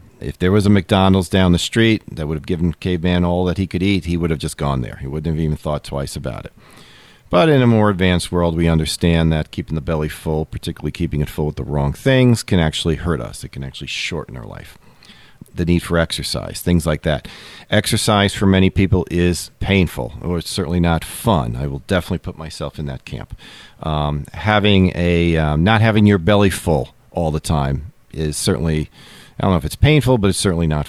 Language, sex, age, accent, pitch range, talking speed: English, male, 40-59, American, 80-105 Hz, 220 wpm